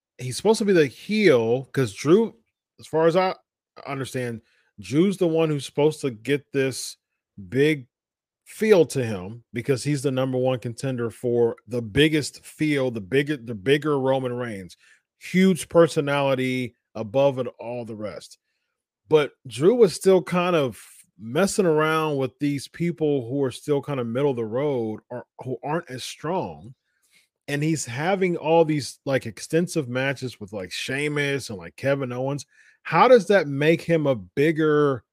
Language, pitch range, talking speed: English, 125-165 Hz, 160 wpm